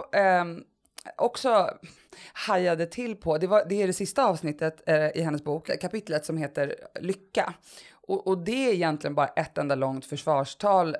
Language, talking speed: Swedish, 165 wpm